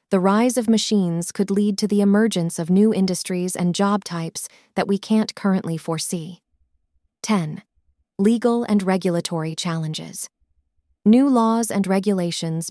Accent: American